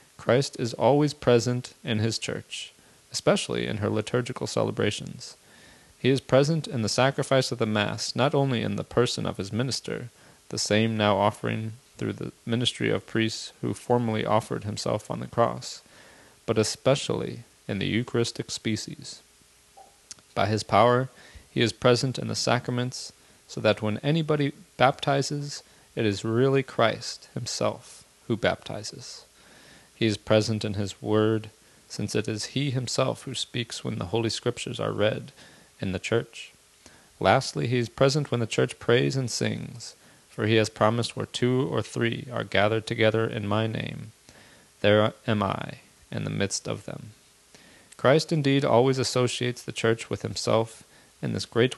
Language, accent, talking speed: English, American, 160 wpm